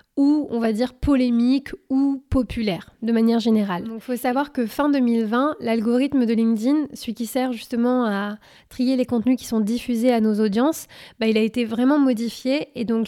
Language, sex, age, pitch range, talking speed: French, female, 20-39, 225-260 Hz, 190 wpm